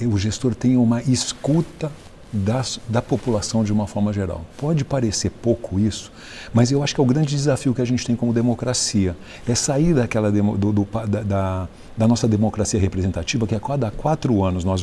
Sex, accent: male, Brazilian